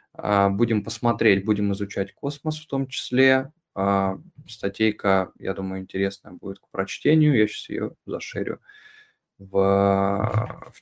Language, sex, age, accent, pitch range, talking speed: Russian, male, 20-39, native, 100-125 Hz, 115 wpm